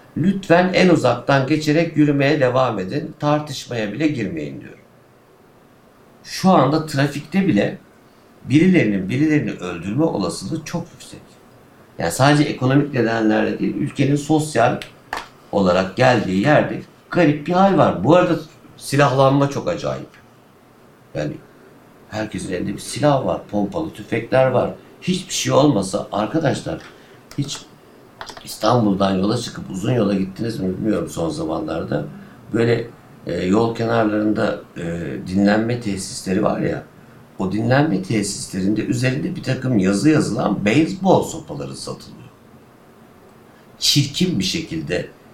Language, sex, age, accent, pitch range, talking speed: Turkish, male, 60-79, native, 105-150 Hz, 110 wpm